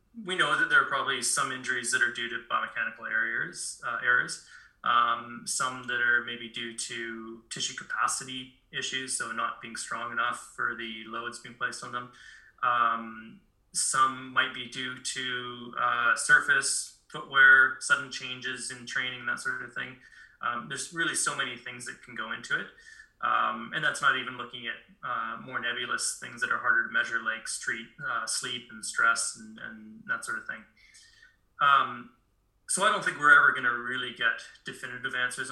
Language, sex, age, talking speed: English, male, 20-39, 180 wpm